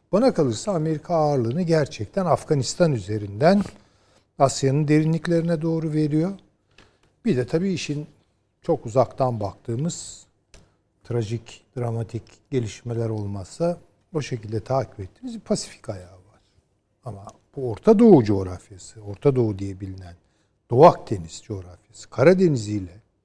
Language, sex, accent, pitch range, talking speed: Turkish, male, native, 105-155 Hz, 110 wpm